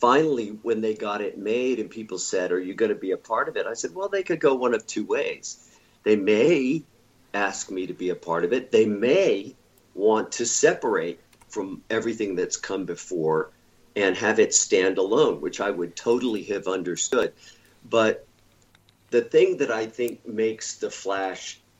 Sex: male